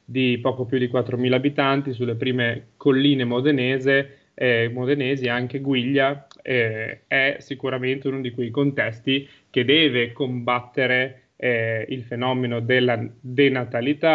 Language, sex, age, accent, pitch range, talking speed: Italian, male, 30-49, native, 120-140 Hz, 125 wpm